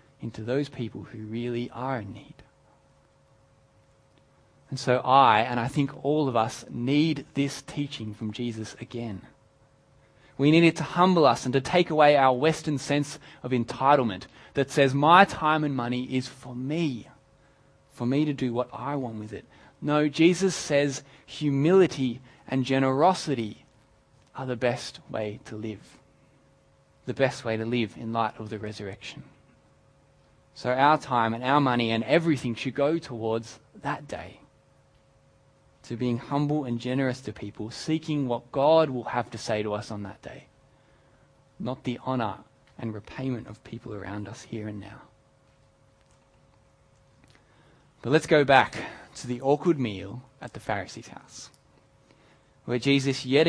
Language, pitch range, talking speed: English, 120-140 Hz, 155 wpm